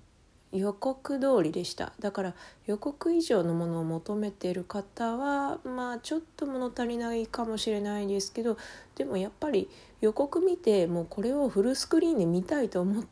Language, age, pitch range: Japanese, 20-39, 175-220 Hz